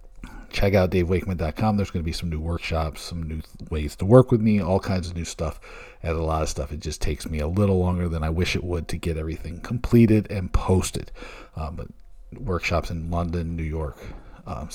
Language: English